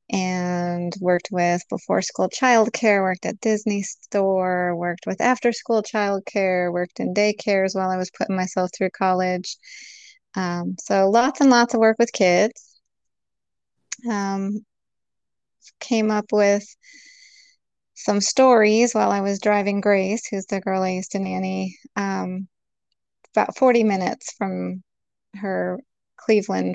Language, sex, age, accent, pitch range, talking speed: English, female, 20-39, American, 185-220 Hz, 130 wpm